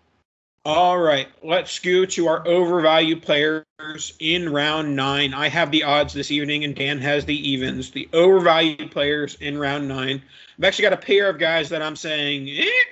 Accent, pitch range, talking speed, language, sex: American, 145-185 Hz, 180 wpm, English, male